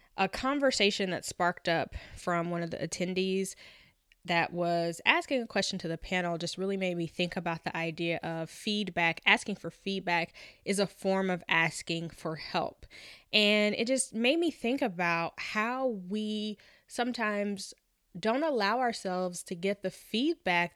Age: 10-29